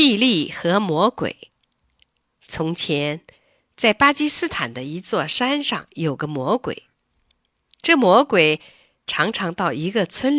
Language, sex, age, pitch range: Chinese, female, 50-69, 170-280 Hz